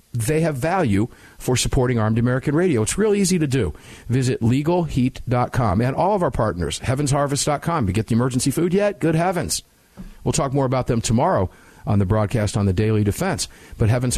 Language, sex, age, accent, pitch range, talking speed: English, male, 50-69, American, 110-135 Hz, 185 wpm